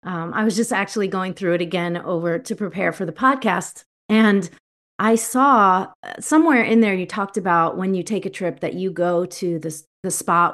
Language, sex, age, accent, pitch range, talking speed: English, female, 40-59, American, 175-220 Hz, 205 wpm